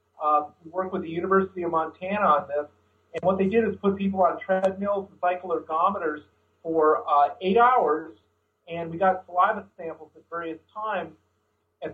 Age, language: 50-69, English